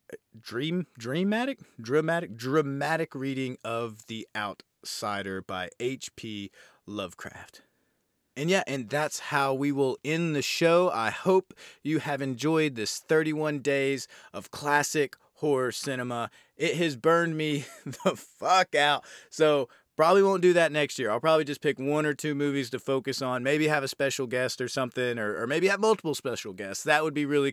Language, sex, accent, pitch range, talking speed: English, male, American, 130-160 Hz, 165 wpm